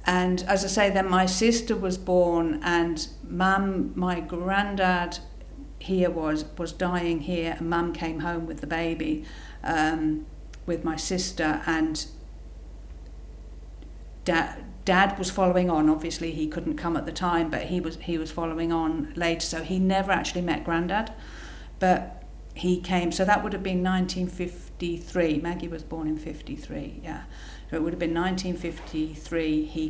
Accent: British